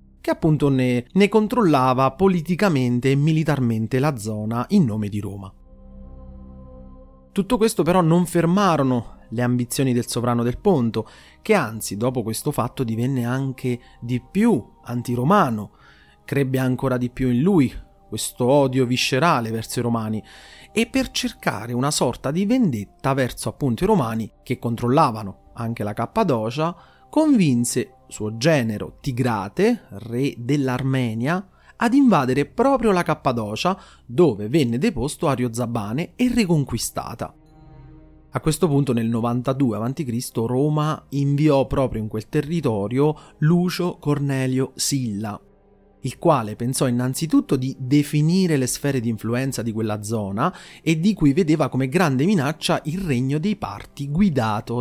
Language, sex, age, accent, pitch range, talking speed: Italian, male, 30-49, native, 115-155 Hz, 130 wpm